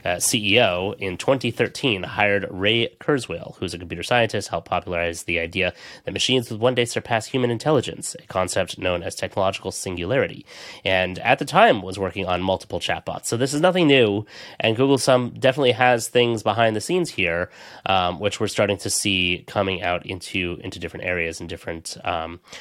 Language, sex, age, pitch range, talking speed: English, male, 30-49, 85-105 Hz, 185 wpm